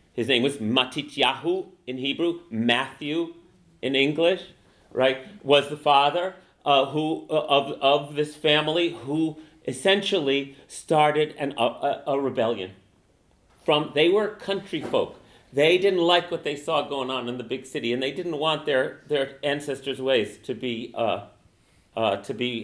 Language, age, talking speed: English, 40-59, 150 wpm